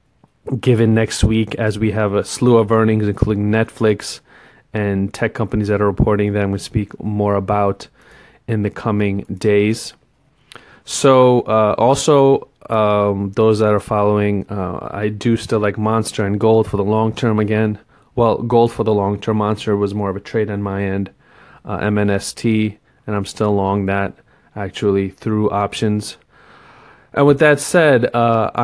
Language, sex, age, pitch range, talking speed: English, male, 30-49, 100-115 Hz, 170 wpm